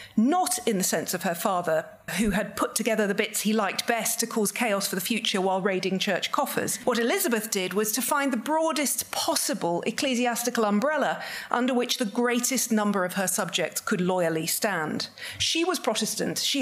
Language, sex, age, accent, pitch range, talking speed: English, female, 40-59, British, 195-255 Hz, 190 wpm